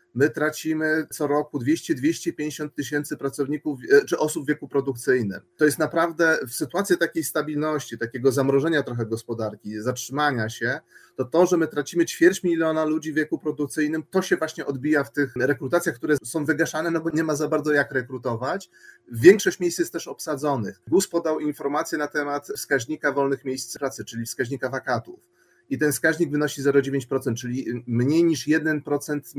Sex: male